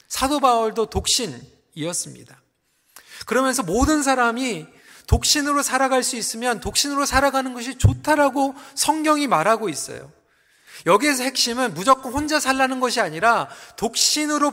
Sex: male